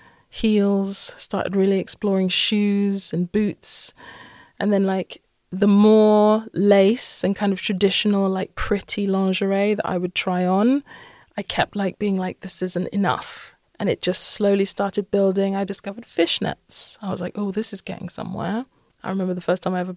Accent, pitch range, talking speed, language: British, 180-210 Hz, 170 wpm, English